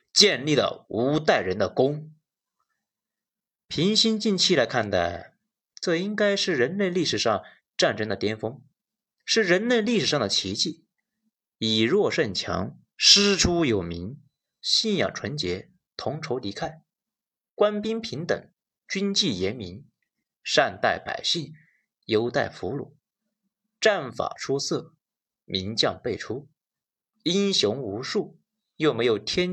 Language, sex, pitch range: Chinese, male, 130-210 Hz